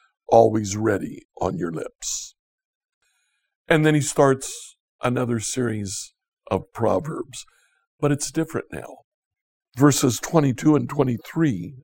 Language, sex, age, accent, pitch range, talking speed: English, male, 60-79, American, 130-165 Hz, 105 wpm